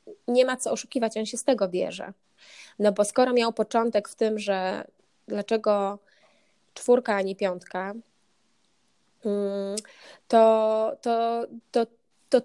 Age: 20-39